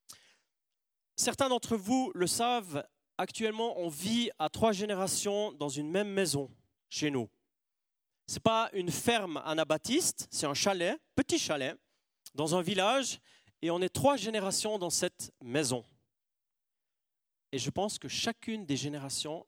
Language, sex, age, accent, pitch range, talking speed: French, male, 40-59, French, 150-225 Hz, 140 wpm